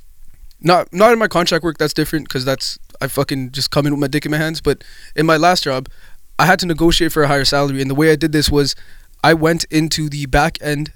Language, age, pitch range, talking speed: English, 20-39, 140-170 Hz, 255 wpm